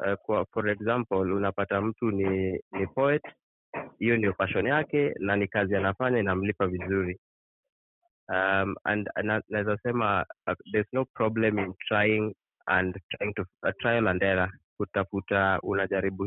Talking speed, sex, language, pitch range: 140 wpm, male, English, 95-115 Hz